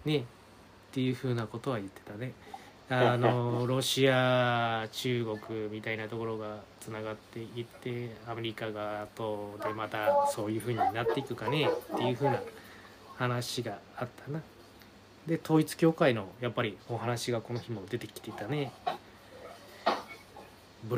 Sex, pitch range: male, 110-150 Hz